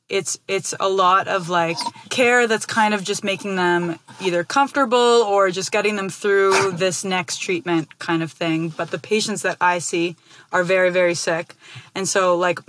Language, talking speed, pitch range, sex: English, 185 wpm, 175-210 Hz, female